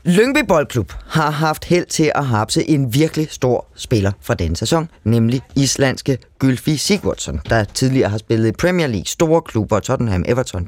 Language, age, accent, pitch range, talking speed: Danish, 30-49, native, 110-145 Hz, 170 wpm